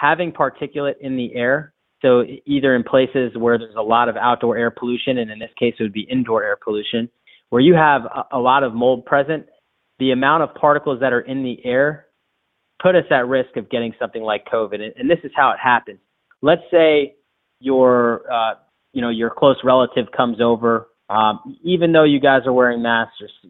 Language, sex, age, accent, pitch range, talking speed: English, male, 30-49, American, 115-145 Hz, 205 wpm